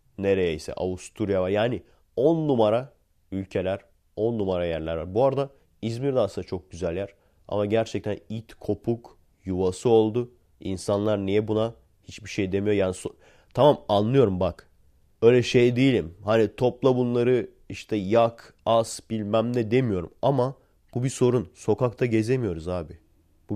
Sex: male